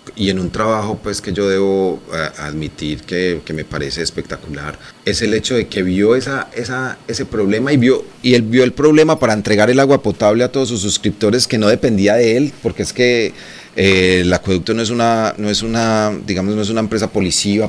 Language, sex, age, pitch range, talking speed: Spanish, male, 30-49, 90-110 Hz, 215 wpm